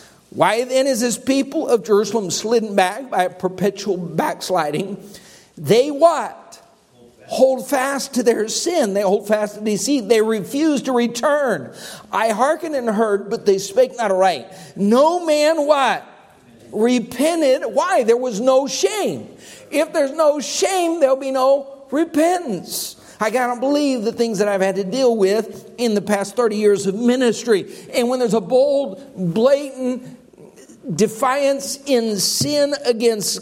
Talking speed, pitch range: 150 wpm, 210-280 Hz